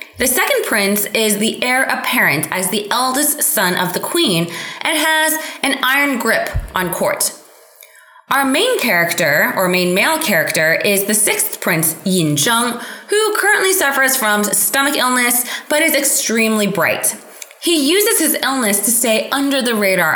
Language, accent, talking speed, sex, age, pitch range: English, American, 160 wpm, female, 20-39, 205-305 Hz